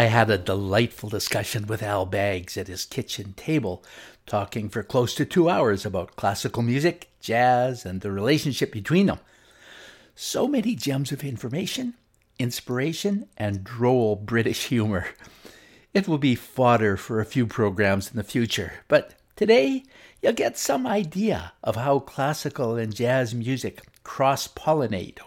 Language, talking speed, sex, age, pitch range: English, 145 wpm, male, 60-79, 105-140 Hz